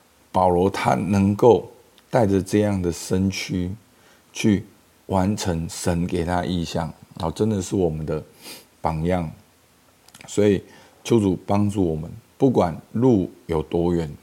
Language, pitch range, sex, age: Chinese, 85-105 Hz, male, 50-69